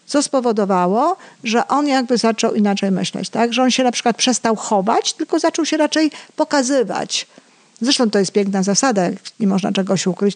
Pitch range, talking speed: 205-250 Hz, 175 wpm